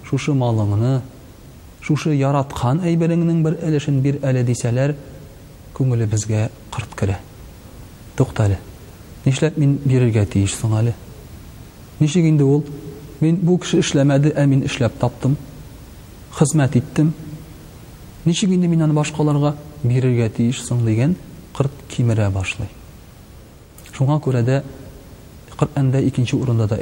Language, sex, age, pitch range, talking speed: Russian, male, 40-59, 120-150 Hz, 90 wpm